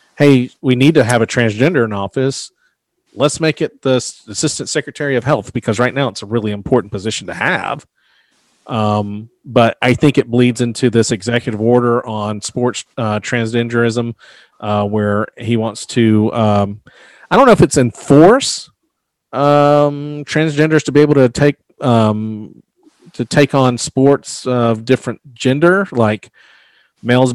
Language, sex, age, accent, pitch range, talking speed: English, male, 40-59, American, 110-135 Hz, 160 wpm